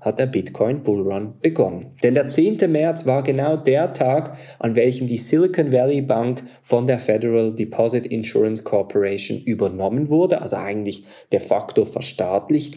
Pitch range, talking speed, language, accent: 115-150 Hz, 155 wpm, German, German